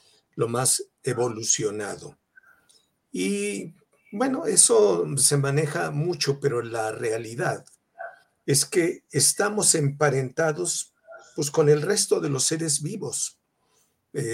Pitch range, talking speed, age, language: 125-160 Hz, 100 wpm, 50-69, Spanish